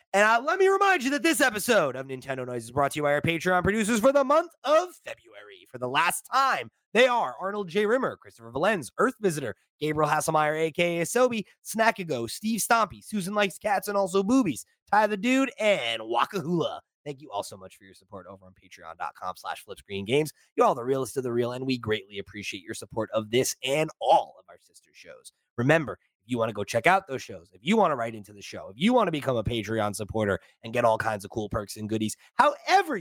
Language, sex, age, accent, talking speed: English, male, 20-39, American, 230 wpm